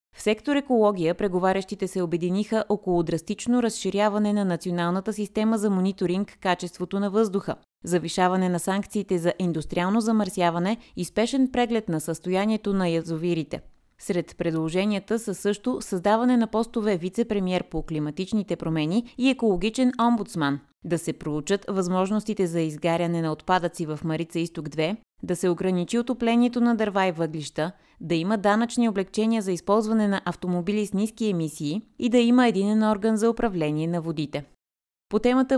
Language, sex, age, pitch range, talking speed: Bulgarian, female, 20-39, 170-220 Hz, 140 wpm